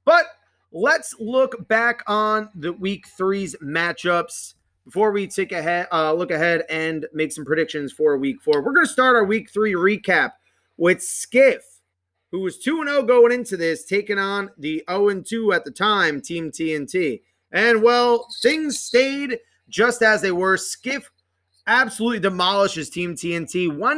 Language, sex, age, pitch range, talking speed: English, male, 30-49, 155-210 Hz, 155 wpm